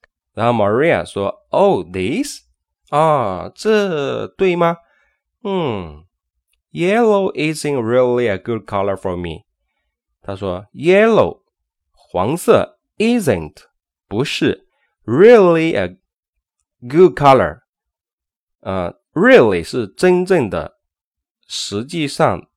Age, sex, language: 20-39, male, Chinese